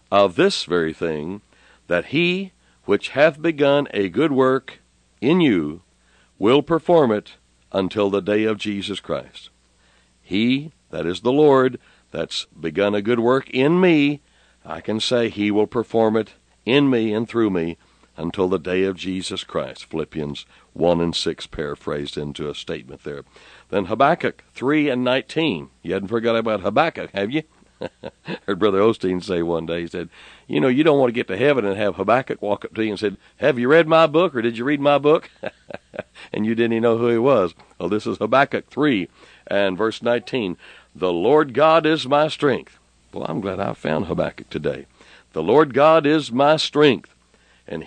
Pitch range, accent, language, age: 90-140 Hz, American, English, 60-79